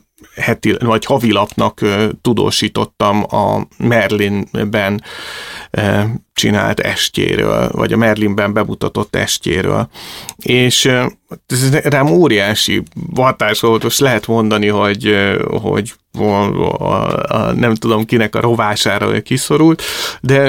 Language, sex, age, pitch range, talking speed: Hungarian, male, 30-49, 105-115 Hz, 110 wpm